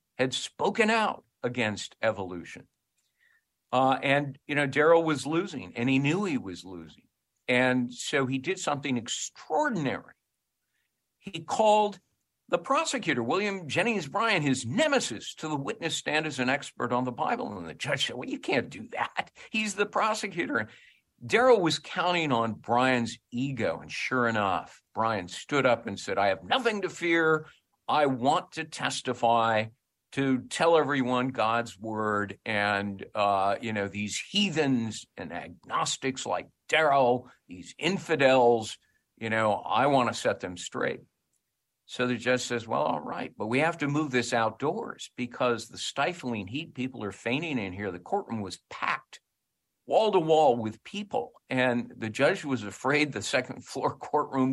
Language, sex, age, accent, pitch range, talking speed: English, male, 50-69, American, 115-160 Hz, 160 wpm